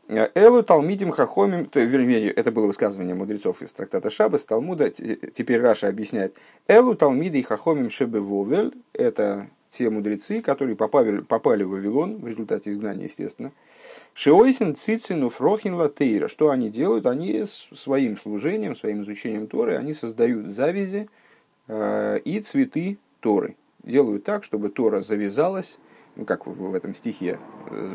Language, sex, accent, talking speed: Russian, male, native, 125 wpm